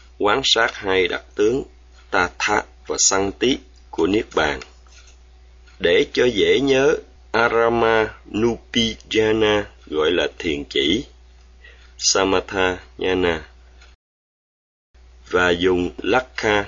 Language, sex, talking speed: Vietnamese, male, 95 wpm